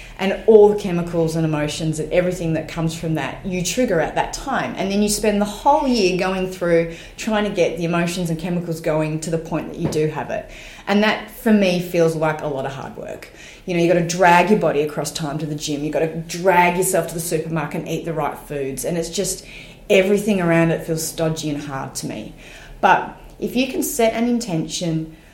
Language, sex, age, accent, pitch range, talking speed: English, female, 30-49, Australian, 155-185 Hz, 230 wpm